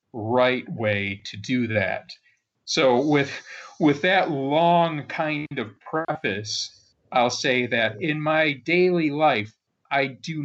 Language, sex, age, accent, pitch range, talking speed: English, male, 40-59, American, 110-140 Hz, 125 wpm